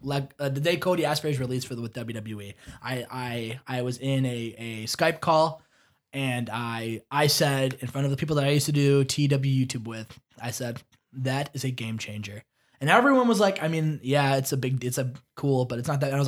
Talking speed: 235 wpm